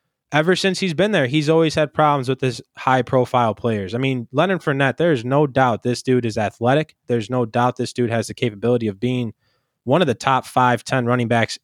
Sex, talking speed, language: male, 220 wpm, English